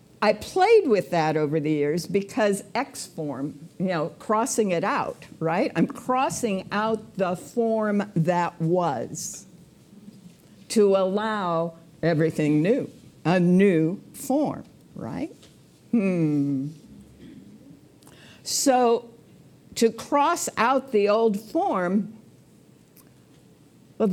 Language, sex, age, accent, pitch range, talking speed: English, female, 60-79, American, 175-235 Hz, 95 wpm